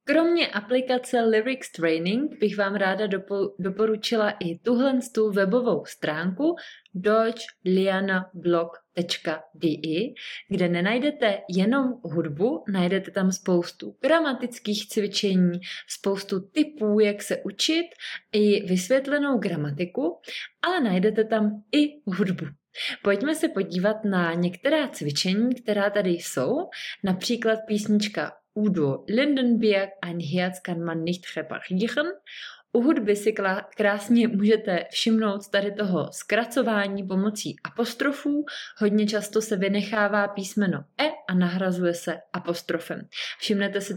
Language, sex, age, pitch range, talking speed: Czech, female, 20-39, 180-230 Hz, 95 wpm